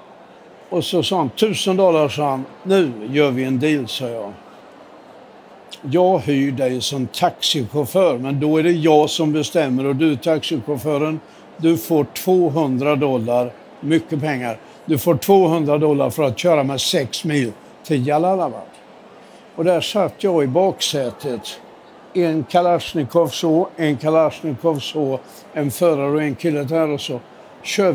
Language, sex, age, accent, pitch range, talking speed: Swedish, male, 60-79, native, 140-175 Hz, 150 wpm